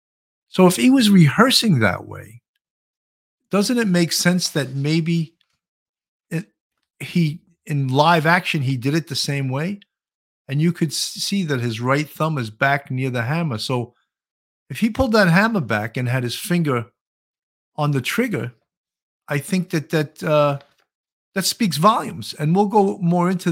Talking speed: 160 wpm